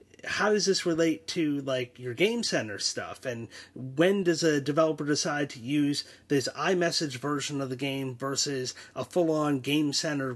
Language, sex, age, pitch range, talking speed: English, male, 30-49, 135-170 Hz, 170 wpm